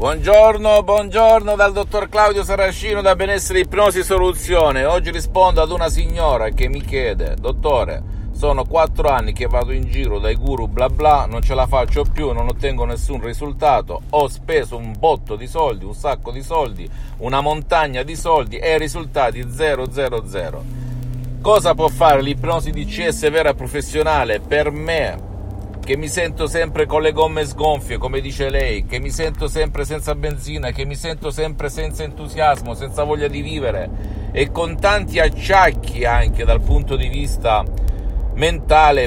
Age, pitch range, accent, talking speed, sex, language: 50-69, 120-165 Hz, native, 160 wpm, male, Italian